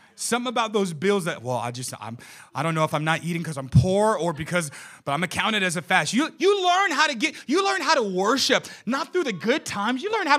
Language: English